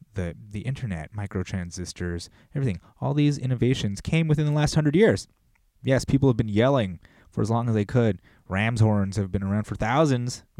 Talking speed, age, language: 185 wpm, 20-39, English